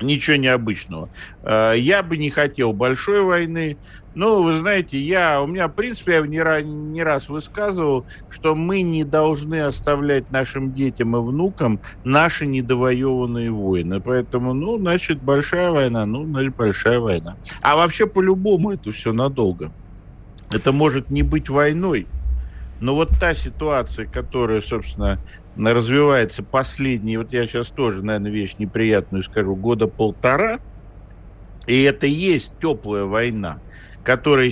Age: 50-69